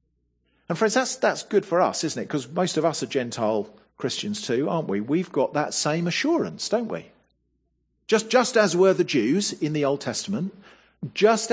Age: 50-69